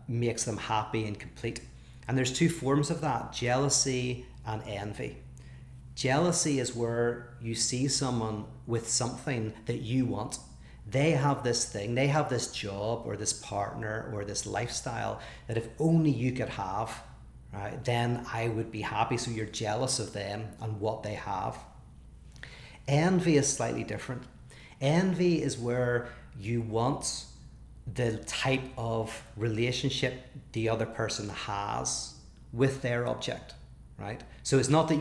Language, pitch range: English, 110-130 Hz